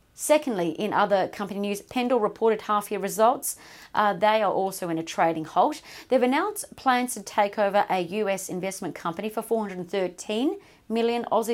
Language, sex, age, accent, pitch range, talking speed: English, female, 40-59, Australian, 175-215 Hz, 160 wpm